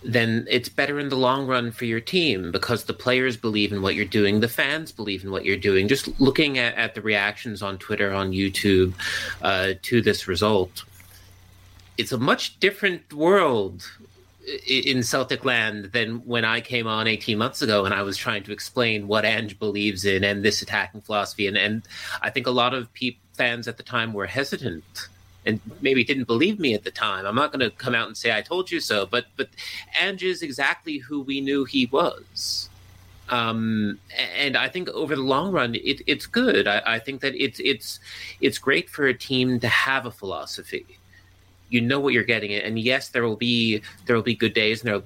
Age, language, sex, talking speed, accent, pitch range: 30-49, English, male, 205 wpm, American, 100-125 Hz